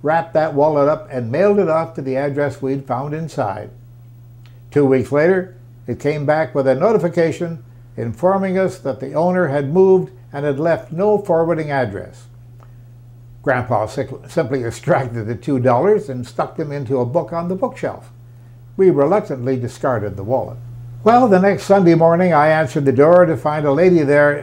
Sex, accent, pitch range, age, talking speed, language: male, American, 120-170 Hz, 60-79, 170 wpm, English